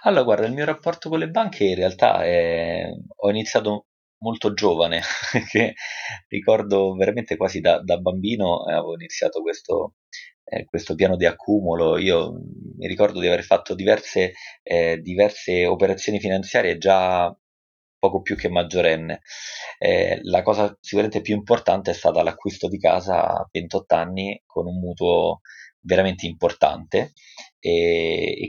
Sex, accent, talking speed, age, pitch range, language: male, native, 140 wpm, 20-39, 85-100 Hz, Italian